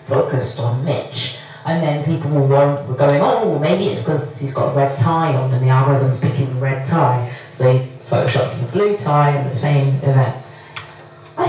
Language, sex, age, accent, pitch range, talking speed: English, female, 30-49, British, 135-185 Hz, 190 wpm